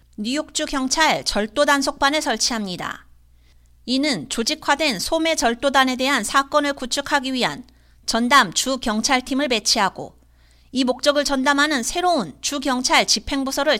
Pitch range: 215-285 Hz